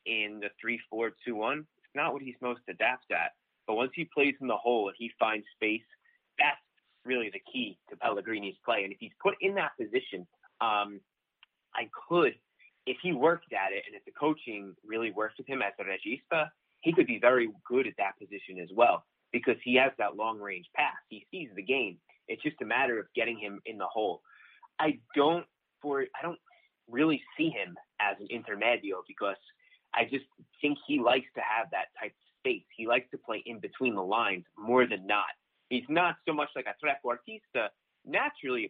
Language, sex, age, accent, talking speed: English, male, 30-49, American, 205 wpm